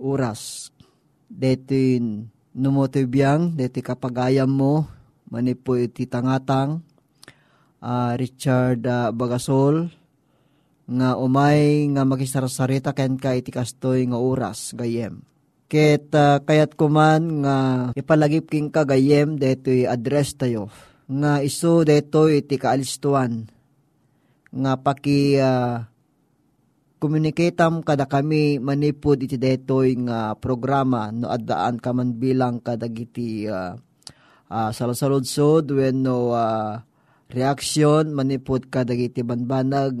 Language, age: Filipino, 20-39